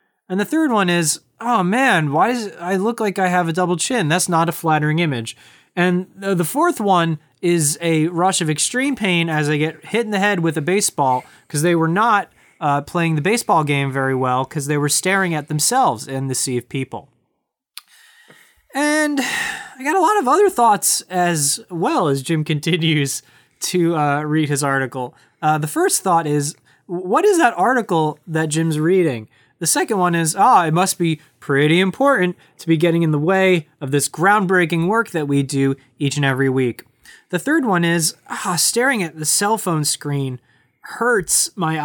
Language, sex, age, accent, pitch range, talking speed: English, male, 20-39, American, 145-195 Hz, 190 wpm